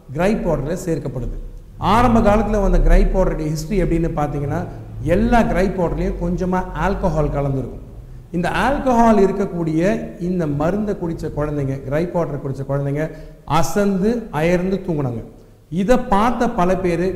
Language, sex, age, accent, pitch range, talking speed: Tamil, male, 50-69, native, 145-190 Hz, 120 wpm